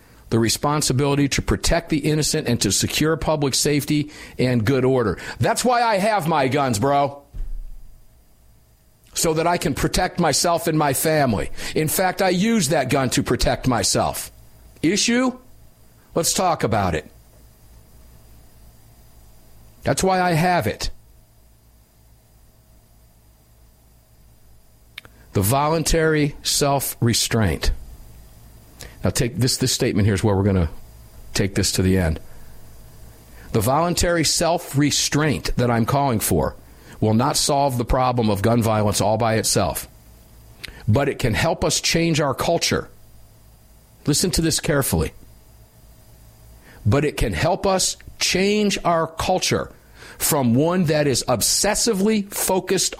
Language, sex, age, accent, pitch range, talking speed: English, male, 50-69, American, 115-165 Hz, 125 wpm